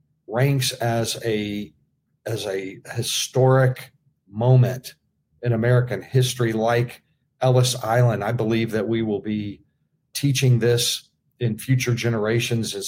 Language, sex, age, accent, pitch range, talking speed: English, male, 50-69, American, 110-130 Hz, 115 wpm